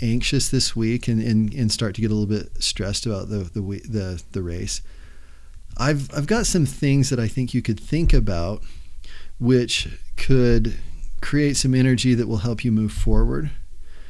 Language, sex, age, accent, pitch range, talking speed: English, male, 40-59, American, 90-120 Hz, 180 wpm